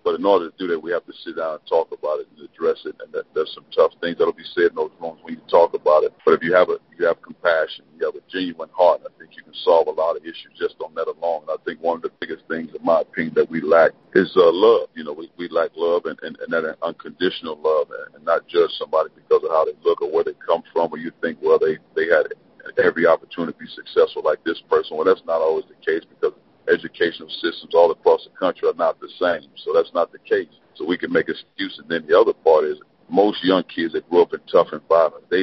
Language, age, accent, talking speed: English, 40-59, American, 275 wpm